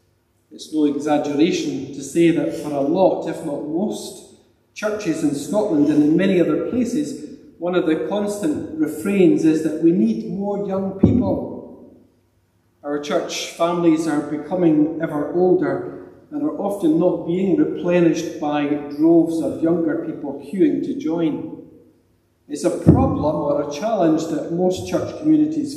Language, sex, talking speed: English, male, 145 wpm